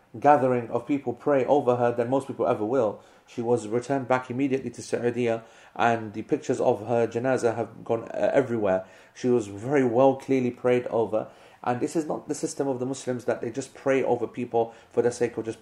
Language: English